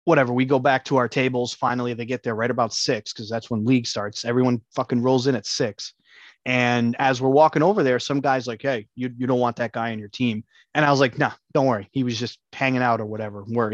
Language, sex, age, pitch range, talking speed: English, male, 20-39, 115-135 Hz, 260 wpm